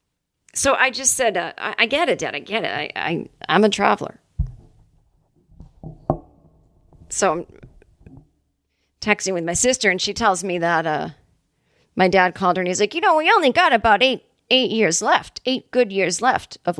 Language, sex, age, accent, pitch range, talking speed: English, female, 40-59, American, 170-255 Hz, 185 wpm